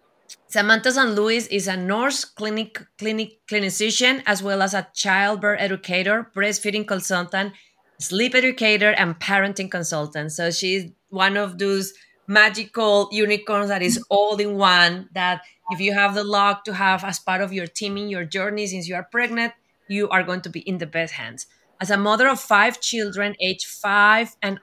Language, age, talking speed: English, 30-49, 175 wpm